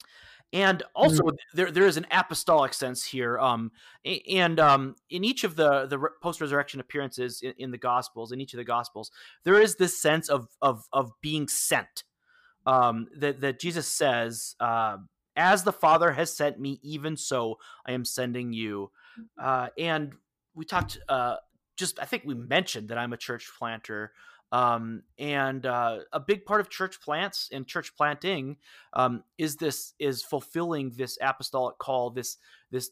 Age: 30-49